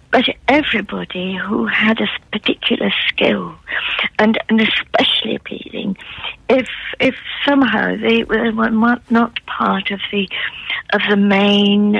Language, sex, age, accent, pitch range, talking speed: English, female, 60-79, British, 200-250 Hz, 115 wpm